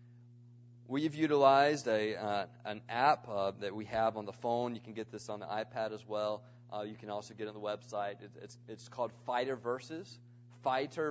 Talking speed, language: 205 wpm, English